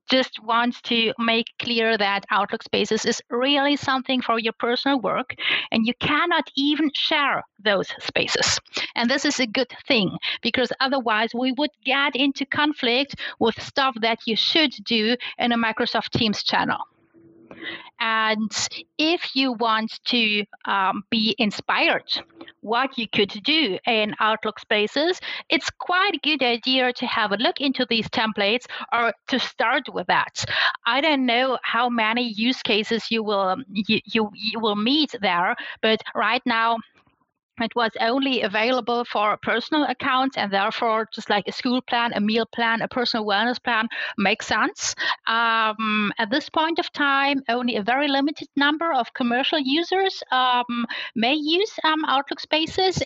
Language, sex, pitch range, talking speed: English, female, 225-275 Hz, 155 wpm